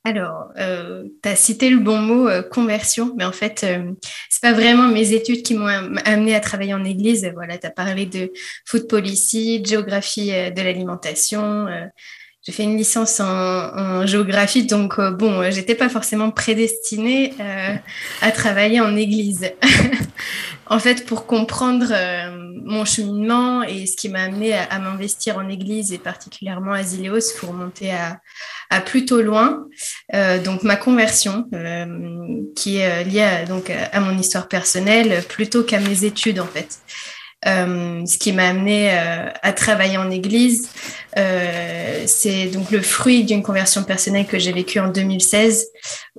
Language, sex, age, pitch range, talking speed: French, female, 20-39, 190-220 Hz, 165 wpm